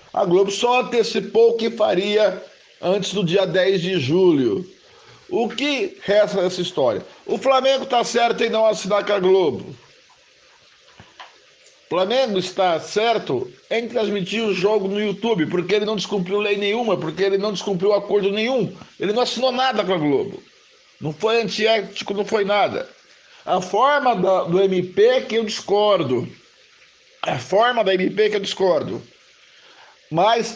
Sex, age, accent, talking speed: male, 60-79, Brazilian, 155 wpm